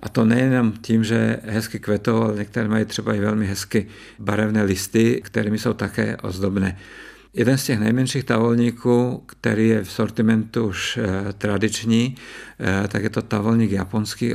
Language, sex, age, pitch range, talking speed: Czech, male, 50-69, 105-115 Hz, 150 wpm